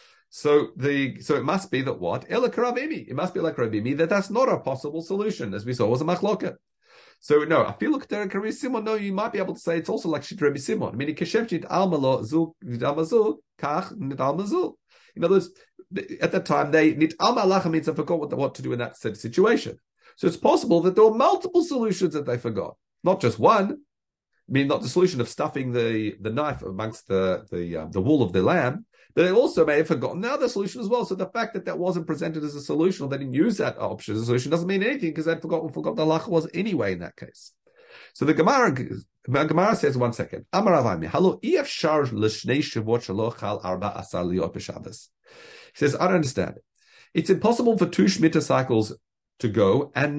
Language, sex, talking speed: English, male, 190 wpm